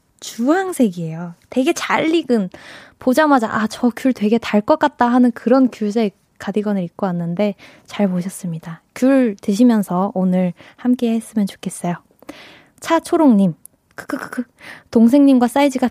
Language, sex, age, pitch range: Korean, female, 20-39, 195-270 Hz